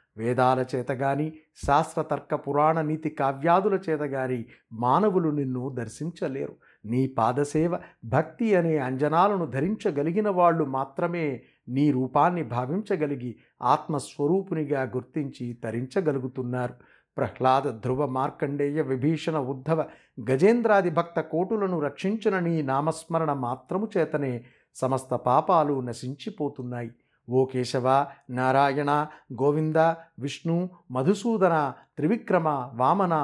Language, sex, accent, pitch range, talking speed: Telugu, male, native, 130-165 Hz, 85 wpm